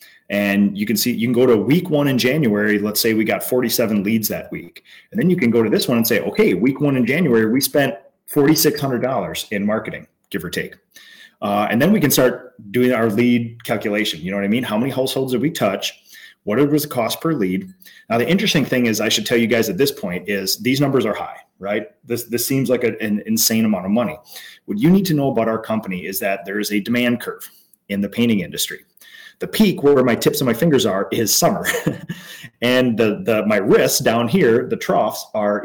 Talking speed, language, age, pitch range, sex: 230 wpm, English, 30-49, 110-145 Hz, male